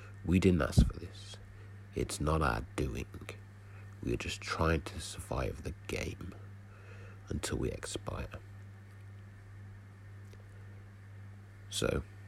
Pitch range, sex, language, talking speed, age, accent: 90-100 Hz, male, English, 105 wpm, 50-69, British